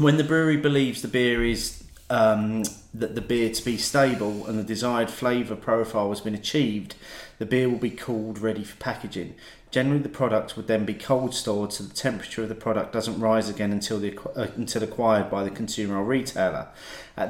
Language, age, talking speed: English, 40-59, 200 wpm